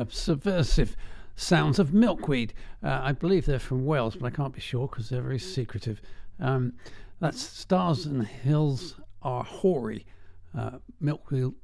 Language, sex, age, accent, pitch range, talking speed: English, male, 50-69, British, 115-140 Hz, 145 wpm